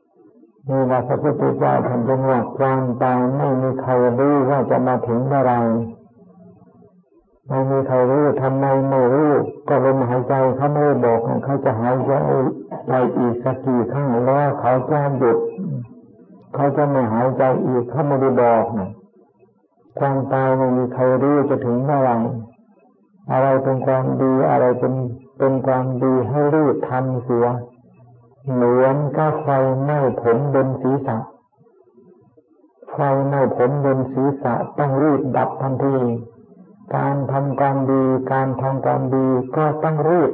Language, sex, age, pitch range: Thai, male, 60-79, 125-140 Hz